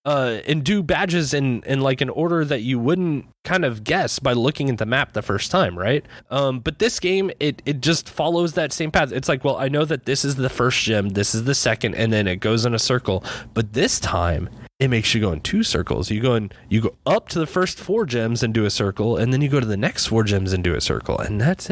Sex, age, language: male, 20-39, English